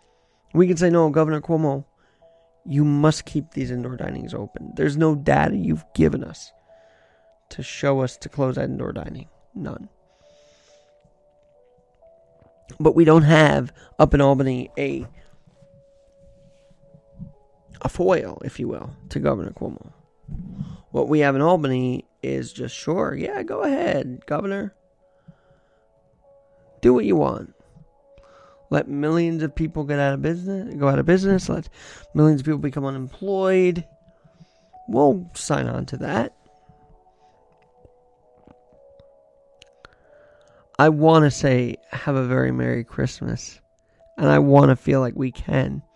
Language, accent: English, American